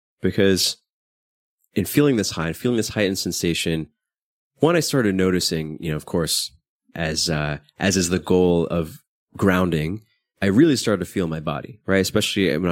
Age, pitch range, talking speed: 20-39, 85-105 Hz, 170 wpm